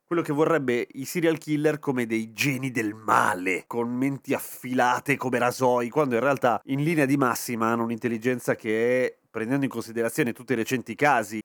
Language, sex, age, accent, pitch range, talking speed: Italian, male, 30-49, native, 105-130 Hz, 175 wpm